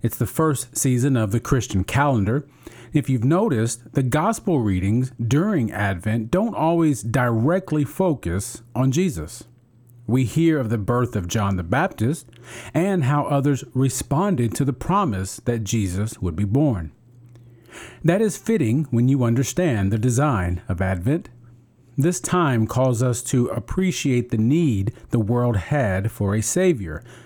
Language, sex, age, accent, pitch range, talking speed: English, male, 40-59, American, 115-150 Hz, 145 wpm